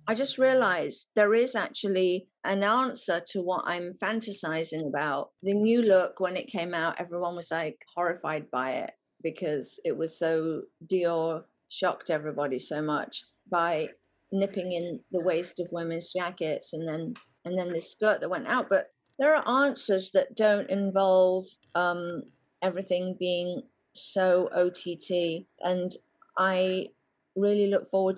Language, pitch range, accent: English, 175-215 Hz, British